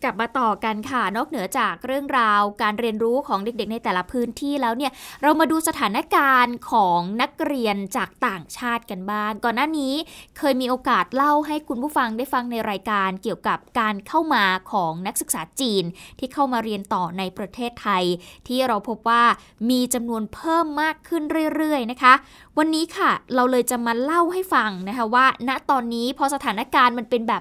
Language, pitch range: Thai, 220-285 Hz